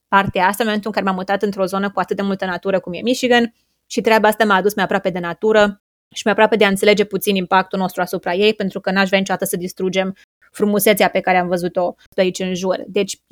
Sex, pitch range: female, 190-210 Hz